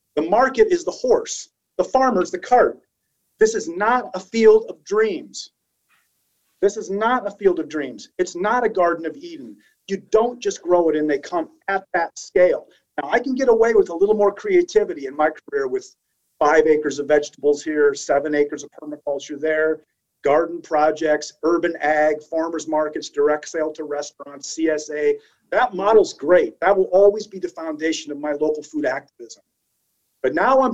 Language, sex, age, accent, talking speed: English, male, 40-59, American, 180 wpm